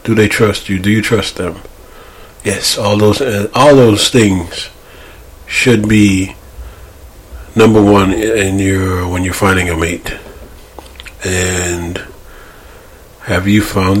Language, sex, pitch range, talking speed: English, male, 90-105 Hz, 130 wpm